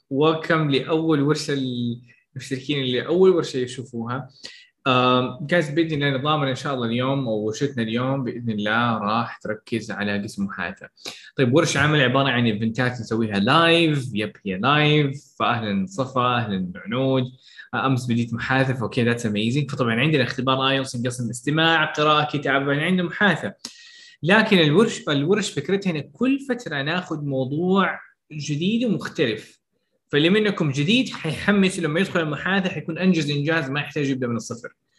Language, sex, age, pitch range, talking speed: Arabic, male, 20-39, 120-155 Hz, 135 wpm